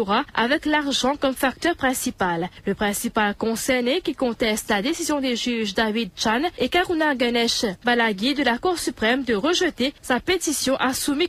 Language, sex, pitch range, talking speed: English, female, 235-300 Hz, 160 wpm